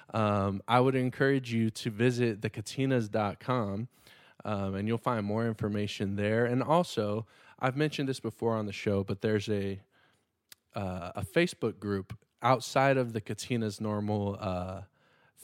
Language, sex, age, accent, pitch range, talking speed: English, male, 20-39, American, 105-130 Hz, 140 wpm